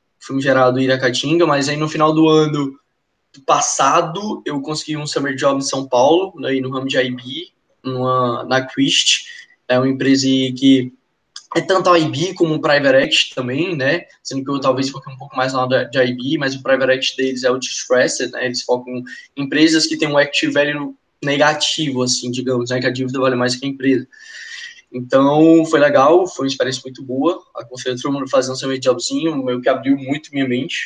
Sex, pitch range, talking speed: male, 130-160 Hz, 210 wpm